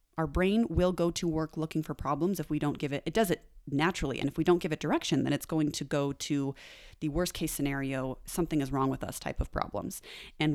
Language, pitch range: English, 140-175 Hz